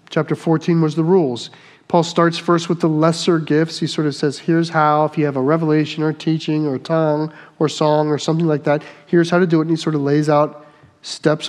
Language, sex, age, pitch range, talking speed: English, male, 40-59, 155-185 Hz, 250 wpm